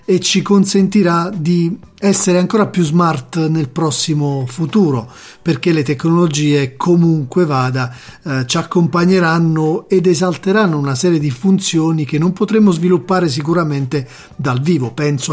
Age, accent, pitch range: 40-59, native, 145-180 Hz